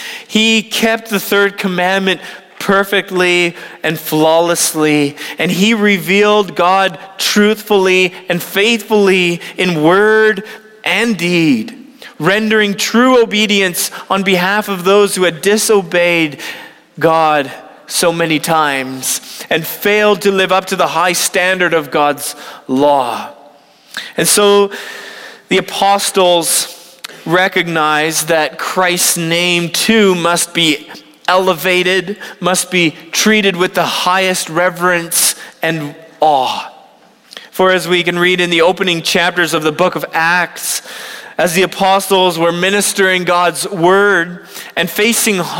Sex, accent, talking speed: male, American, 115 wpm